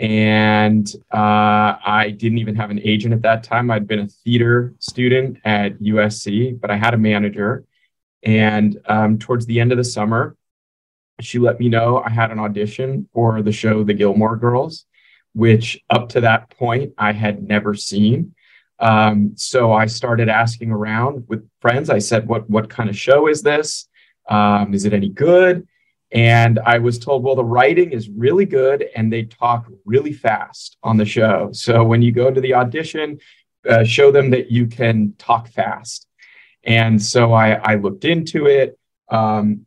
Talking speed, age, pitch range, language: 175 wpm, 30-49, 110-130 Hz, English